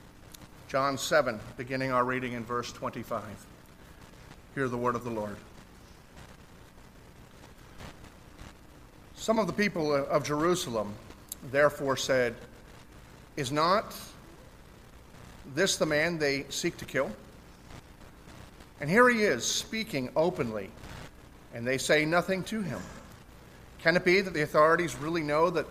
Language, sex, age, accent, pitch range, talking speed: English, male, 40-59, American, 115-165 Hz, 120 wpm